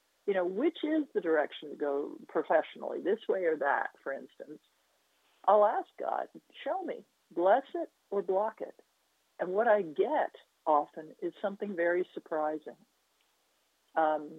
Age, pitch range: 50-69, 150-235 Hz